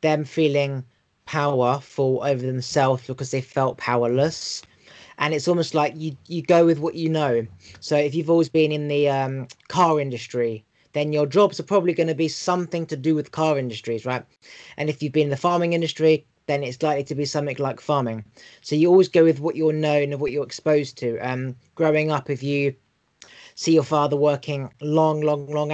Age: 20-39